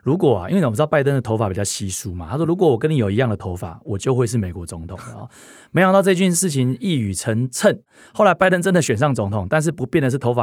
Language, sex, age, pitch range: Chinese, male, 30-49, 110-160 Hz